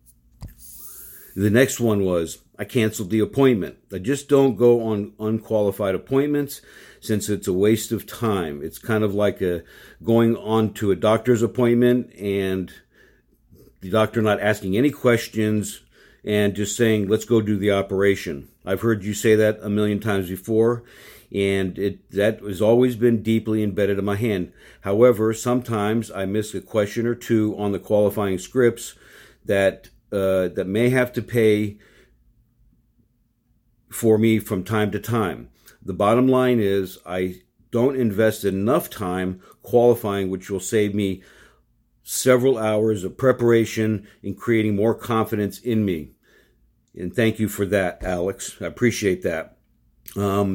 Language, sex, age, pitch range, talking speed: English, male, 50-69, 100-115 Hz, 150 wpm